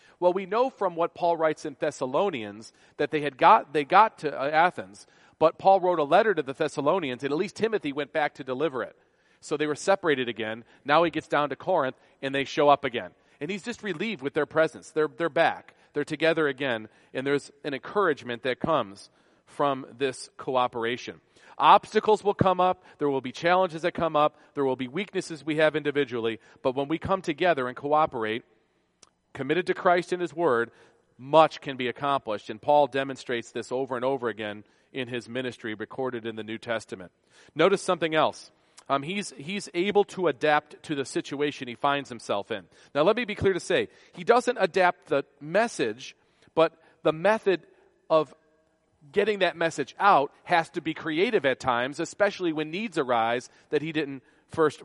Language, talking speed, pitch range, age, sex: English, 190 wpm, 135-175 Hz, 40-59, male